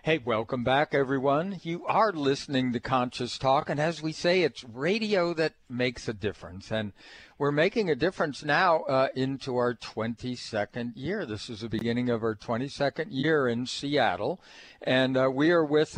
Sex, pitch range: male, 115-145 Hz